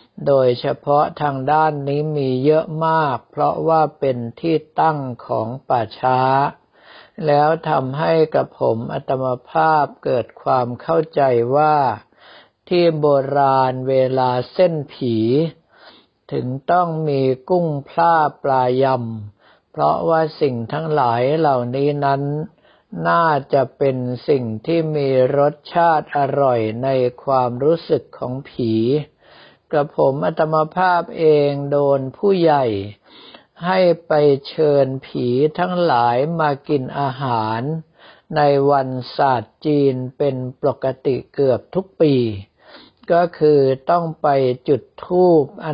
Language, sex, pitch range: Thai, male, 130-155 Hz